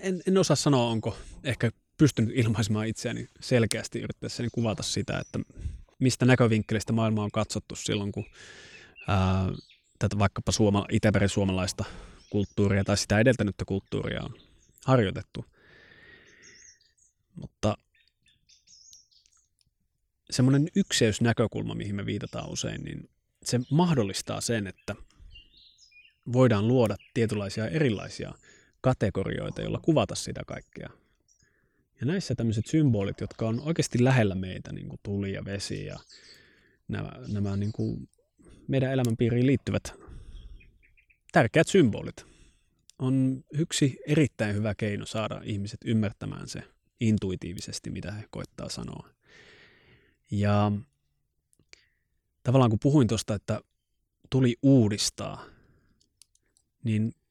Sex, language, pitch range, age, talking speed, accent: male, Finnish, 100-130 Hz, 20-39, 105 wpm, native